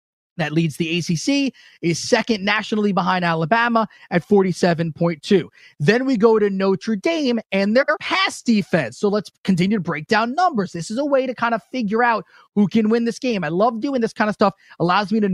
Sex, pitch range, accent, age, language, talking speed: male, 170-225 Hz, American, 30-49, English, 205 wpm